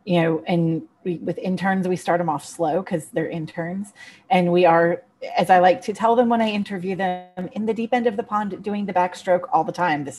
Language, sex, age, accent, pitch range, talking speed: English, female, 30-49, American, 170-195 Hz, 235 wpm